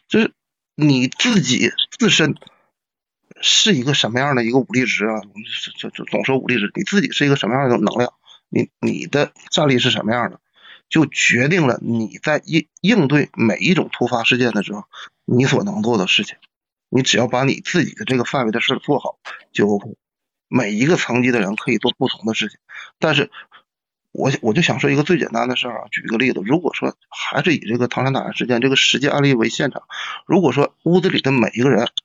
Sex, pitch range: male, 120-140 Hz